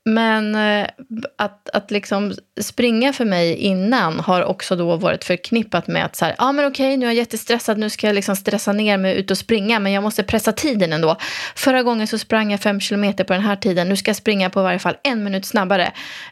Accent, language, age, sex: Swedish, English, 20-39, female